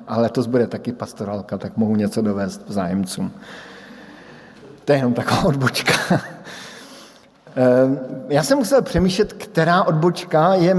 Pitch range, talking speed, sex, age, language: 130-180 Hz, 120 wpm, male, 50-69, Slovak